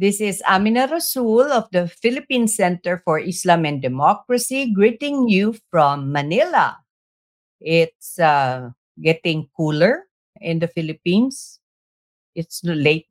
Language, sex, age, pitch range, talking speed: English, female, 50-69, 160-225 Hz, 115 wpm